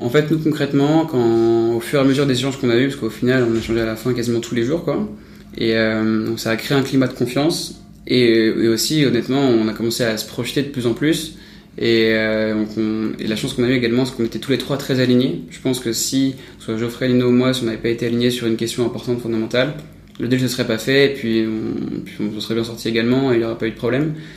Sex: male